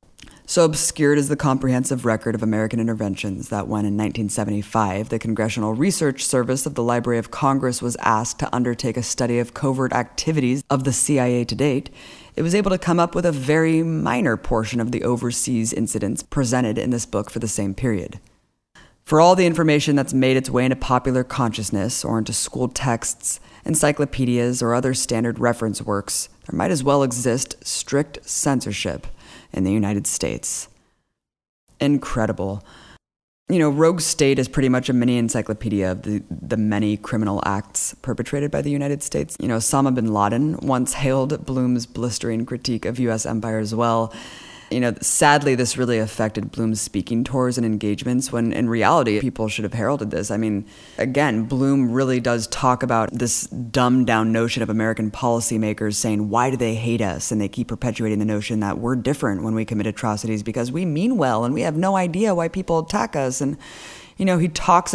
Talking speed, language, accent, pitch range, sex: 185 wpm, English, American, 110-135 Hz, female